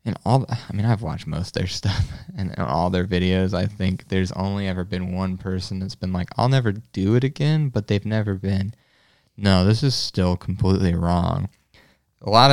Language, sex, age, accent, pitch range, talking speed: English, male, 20-39, American, 95-110 Hz, 200 wpm